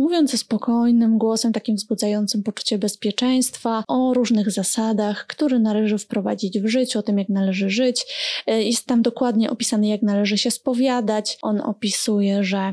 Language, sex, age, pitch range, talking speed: Polish, female, 20-39, 210-245 Hz, 150 wpm